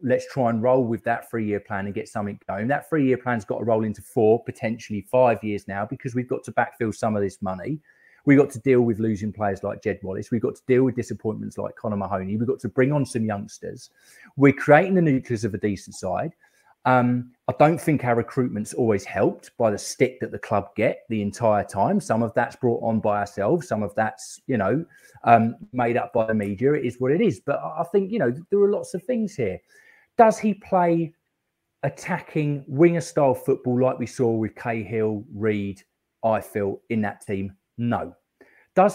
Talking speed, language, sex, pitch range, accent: 215 wpm, English, male, 110-140 Hz, British